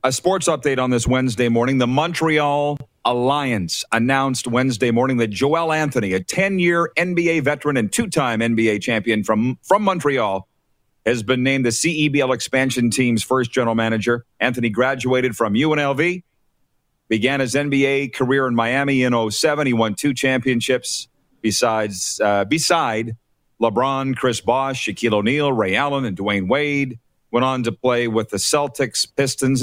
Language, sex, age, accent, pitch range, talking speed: English, male, 40-59, American, 115-140 Hz, 150 wpm